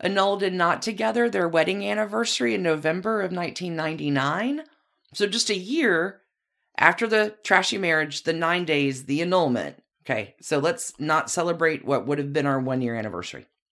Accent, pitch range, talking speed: American, 150-205 Hz, 155 wpm